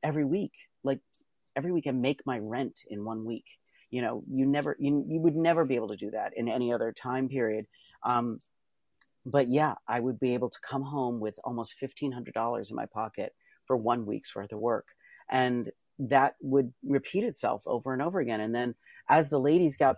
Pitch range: 120-145 Hz